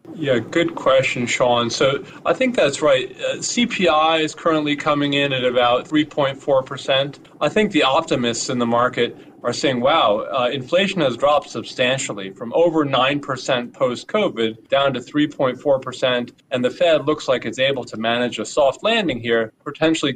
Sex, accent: male, American